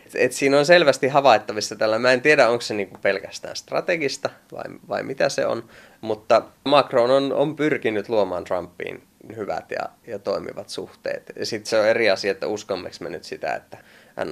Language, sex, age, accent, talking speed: Finnish, male, 20-39, native, 170 wpm